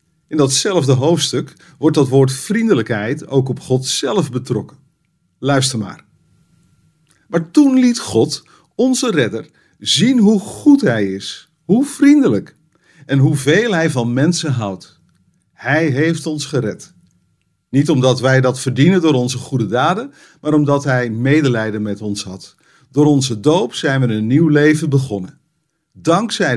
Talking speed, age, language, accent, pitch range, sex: 140 wpm, 50-69, Dutch, Dutch, 125-165 Hz, male